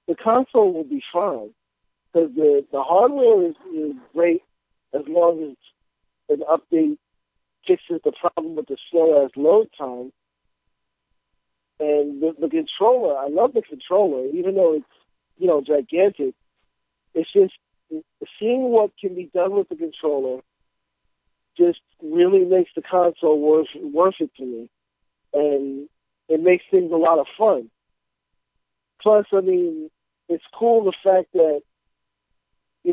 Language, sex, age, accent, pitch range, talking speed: English, male, 50-69, American, 150-210 Hz, 140 wpm